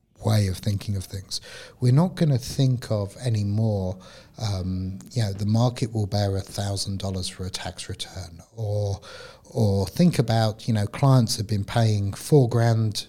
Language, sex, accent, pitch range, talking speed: English, male, British, 100-120 Hz, 170 wpm